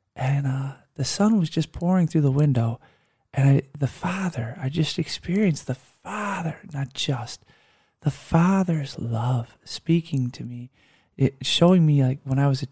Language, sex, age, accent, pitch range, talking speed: English, male, 20-39, American, 135-170 Hz, 155 wpm